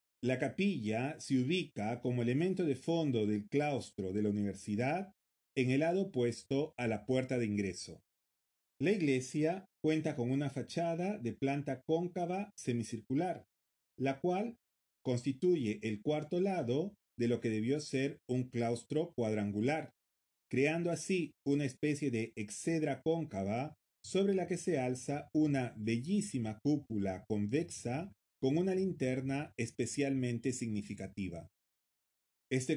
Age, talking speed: 40-59, 125 wpm